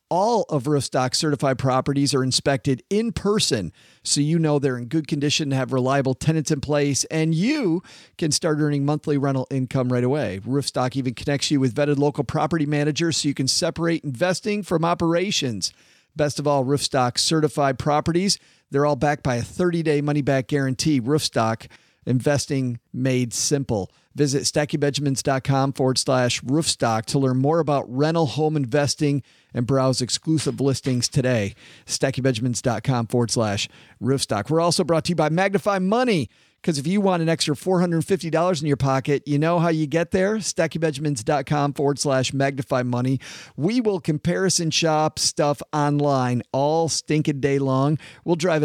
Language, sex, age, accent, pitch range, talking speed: English, male, 40-59, American, 130-160 Hz, 160 wpm